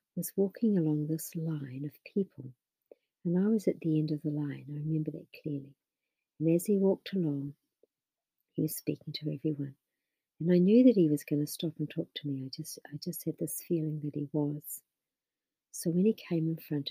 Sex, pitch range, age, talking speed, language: female, 150-165 Hz, 50-69, 210 wpm, English